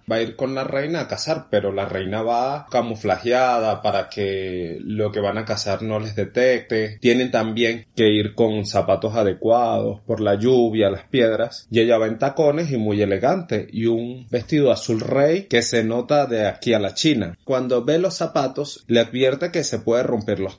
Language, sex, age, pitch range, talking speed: Spanish, male, 30-49, 100-130 Hz, 195 wpm